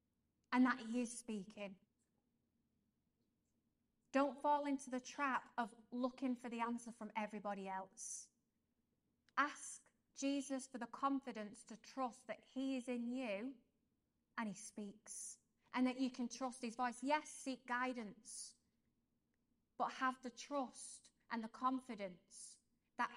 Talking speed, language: 130 wpm, English